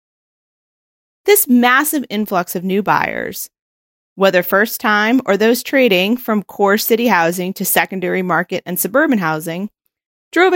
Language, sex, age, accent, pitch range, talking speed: English, female, 30-49, American, 175-250 Hz, 130 wpm